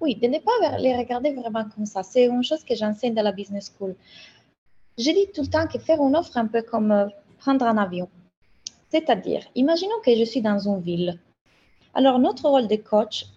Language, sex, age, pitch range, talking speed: French, female, 20-39, 200-250 Hz, 210 wpm